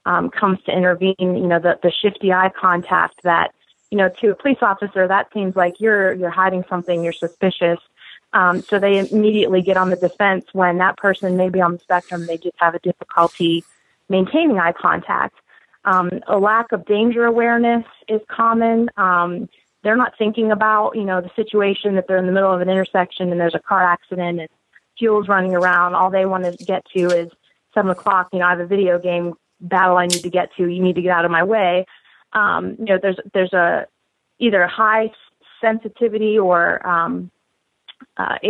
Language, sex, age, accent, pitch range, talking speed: English, female, 30-49, American, 180-215 Hz, 200 wpm